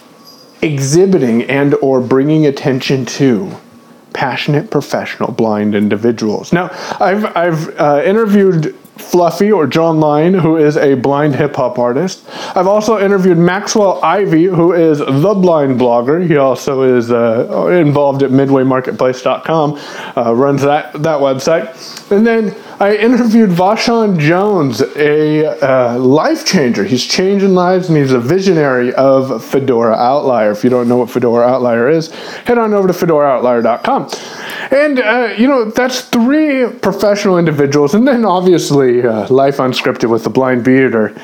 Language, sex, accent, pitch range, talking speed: English, male, American, 135-195 Hz, 140 wpm